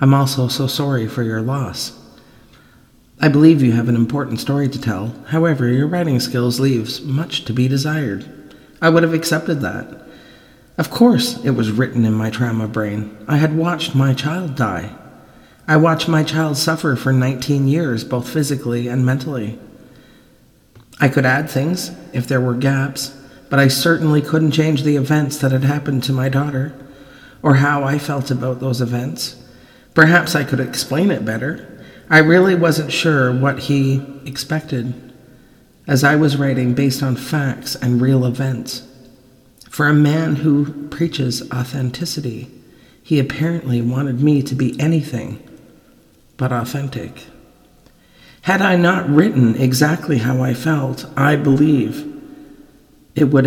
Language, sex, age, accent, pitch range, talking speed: English, male, 40-59, American, 125-150 Hz, 150 wpm